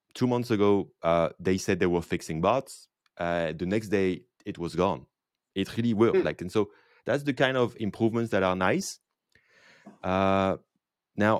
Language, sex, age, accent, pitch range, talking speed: English, male, 30-49, French, 90-115 Hz, 175 wpm